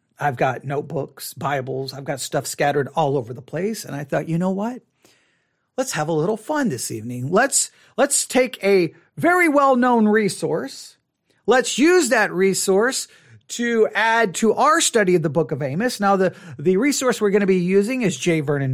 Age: 40-59